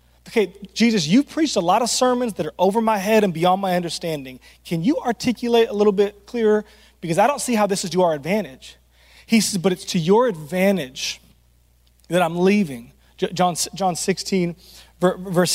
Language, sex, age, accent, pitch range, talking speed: English, male, 30-49, American, 125-205 Hz, 185 wpm